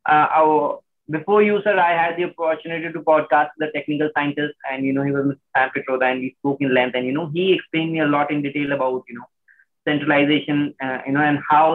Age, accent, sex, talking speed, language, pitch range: 20-39, Indian, male, 235 wpm, English, 140-165 Hz